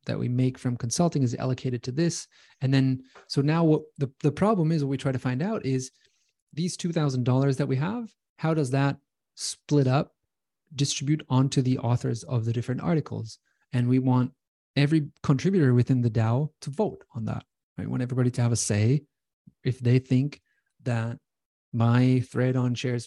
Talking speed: 180 wpm